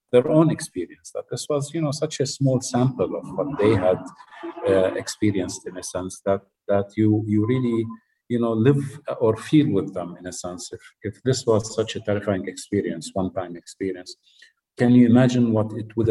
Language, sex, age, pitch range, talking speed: English, male, 50-69, 95-115 Hz, 195 wpm